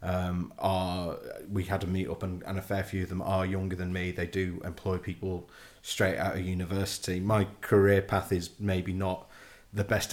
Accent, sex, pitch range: British, male, 95-100 Hz